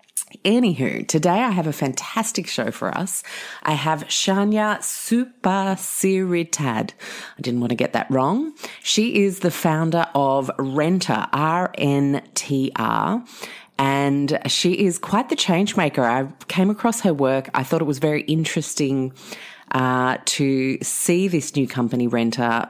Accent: Australian